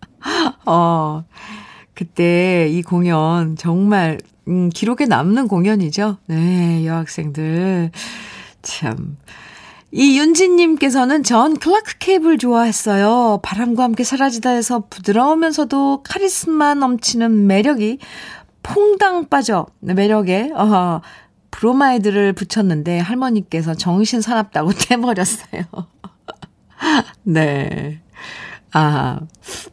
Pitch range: 175-250 Hz